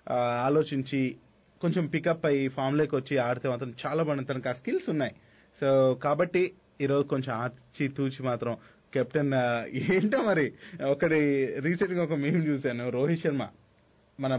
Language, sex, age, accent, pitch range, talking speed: Telugu, male, 30-49, native, 135-170 Hz, 130 wpm